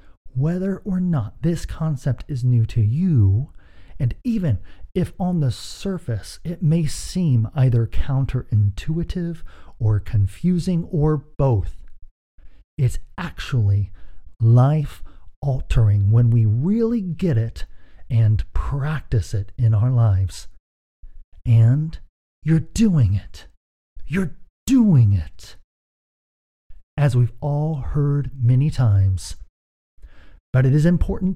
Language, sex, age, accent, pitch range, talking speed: English, male, 40-59, American, 90-145 Hz, 105 wpm